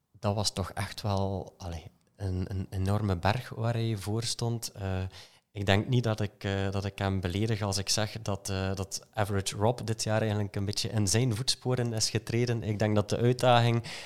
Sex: male